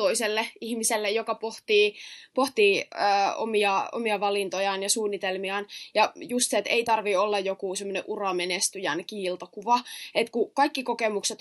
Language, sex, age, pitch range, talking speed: Finnish, female, 20-39, 200-245 Hz, 130 wpm